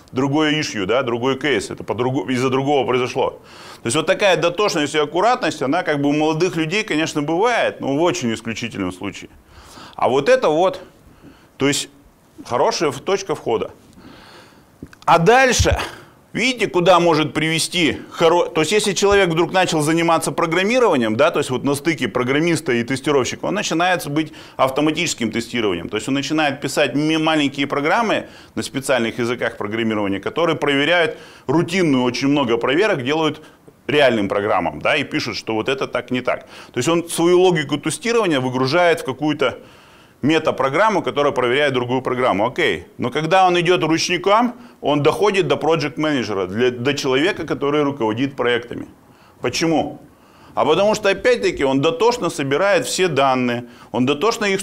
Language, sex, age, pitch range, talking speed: Russian, male, 30-49, 130-175 Hz, 150 wpm